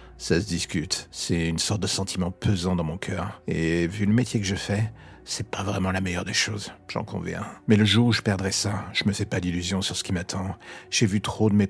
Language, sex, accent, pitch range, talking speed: French, male, French, 90-105 Hz, 250 wpm